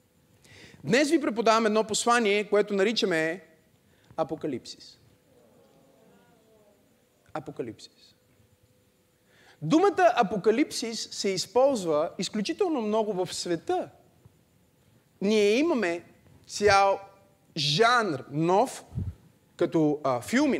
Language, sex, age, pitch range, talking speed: Bulgarian, male, 30-49, 160-235 Hz, 75 wpm